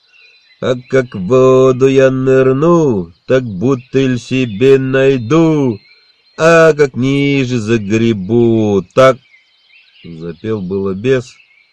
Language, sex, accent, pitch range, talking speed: Russian, male, native, 100-130 Hz, 90 wpm